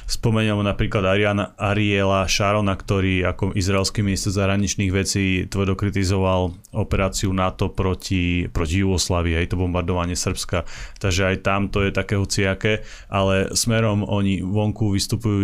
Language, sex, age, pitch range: Slovak, male, 30-49, 95-105 Hz